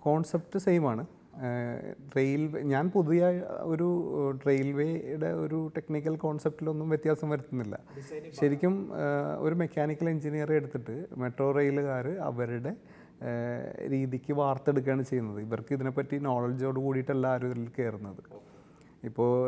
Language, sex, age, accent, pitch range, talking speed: Malayalam, male, 30-49, native, 120-150 Hz, 95 wpm